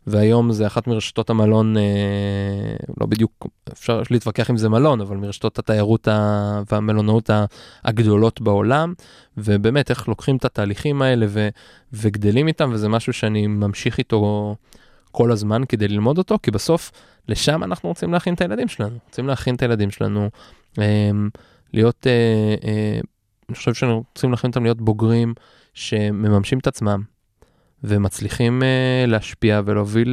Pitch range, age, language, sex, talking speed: 105-125 Hz, 20-39, Hebrew, male, 140 wpm